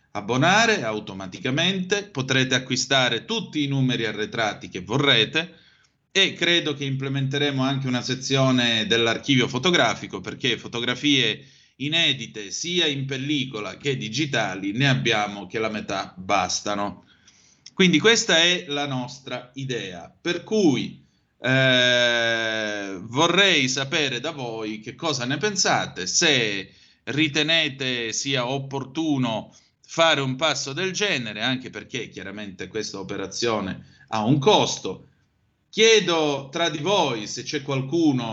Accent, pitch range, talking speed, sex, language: native, 110-145 Hz, 115 wpm, male, Italian